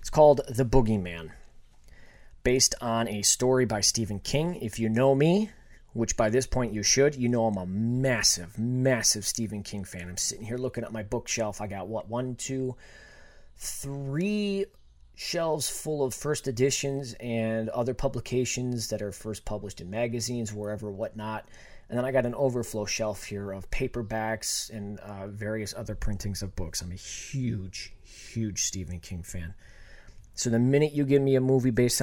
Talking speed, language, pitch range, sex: 170 wpm, English, 105-130 Hz, male